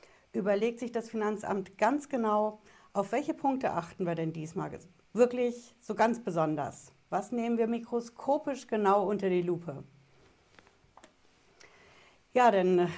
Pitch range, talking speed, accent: 175-230 Hz, 125 wpm, German